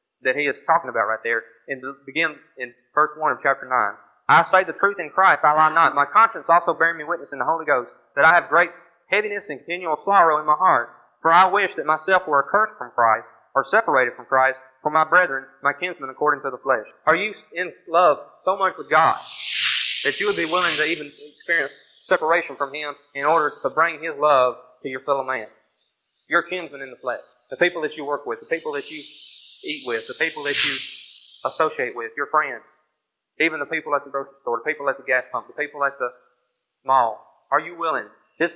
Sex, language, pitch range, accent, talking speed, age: male, English, 145-190 Hz, American, 225 wpm, 30-49